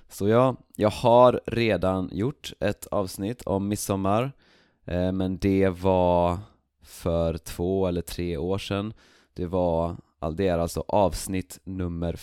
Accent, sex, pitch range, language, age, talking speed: native, male, 85-110 Hz, Swedish, 20-39, 130 wpm